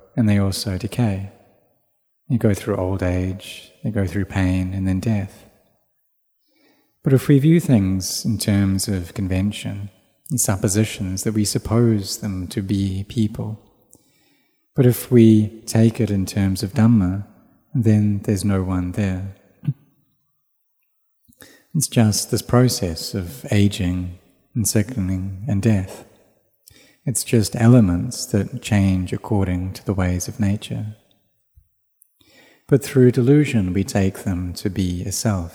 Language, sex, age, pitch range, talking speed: English, male, 30-49, 95-115 Hz, 135 wpm